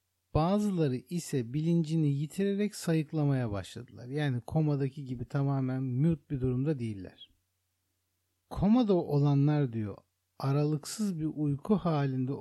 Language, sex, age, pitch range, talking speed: Turkish, male, 60-79, 105-150 Hz, 100 wpm